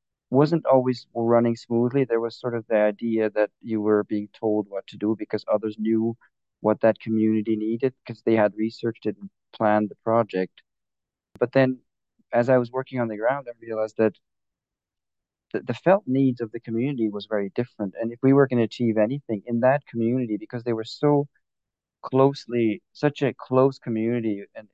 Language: English